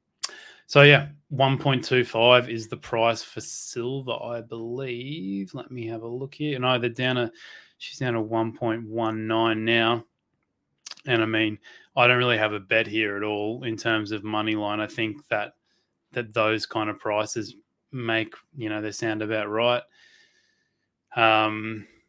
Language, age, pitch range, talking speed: English, 20-39, 105-125 Hz, 160 wpm